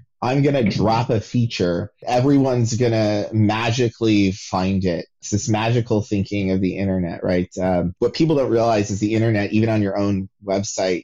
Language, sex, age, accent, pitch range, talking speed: English, male, 30-49, American, 95-115 Hz, 175 wpm